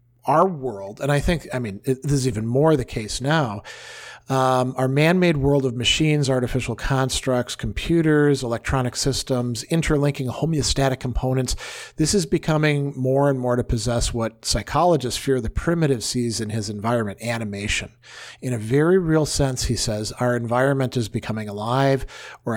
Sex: male